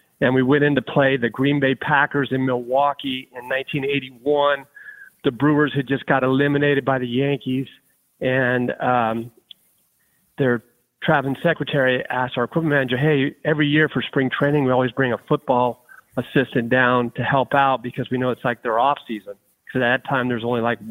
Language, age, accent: English, 40-59, American